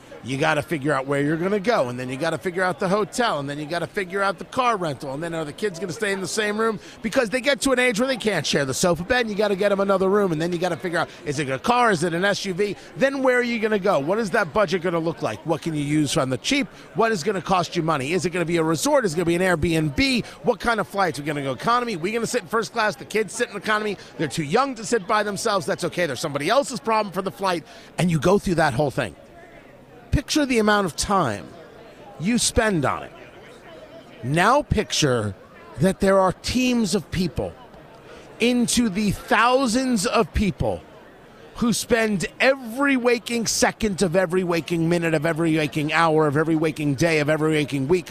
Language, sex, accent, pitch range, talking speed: English, male, American, 160-225 Hz, 260 wpm